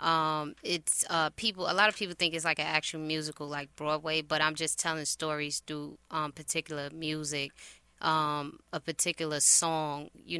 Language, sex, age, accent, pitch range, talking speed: English, female, 20-39, American, 150-165 Hz, 175 wpm